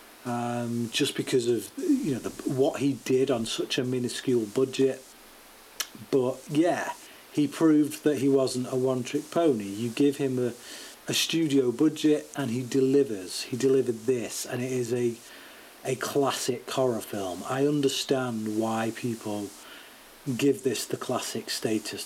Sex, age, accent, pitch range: male, 40-59, British, 120-140 Hz